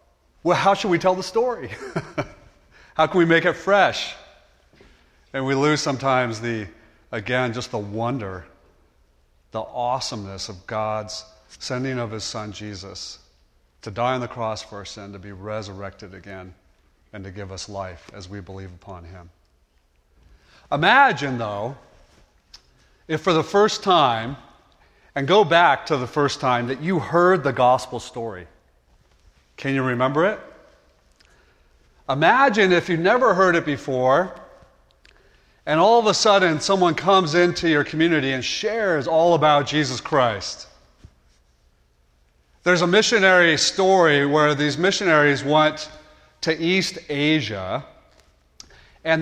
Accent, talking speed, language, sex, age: American, 135 wpm, English, male, 40-59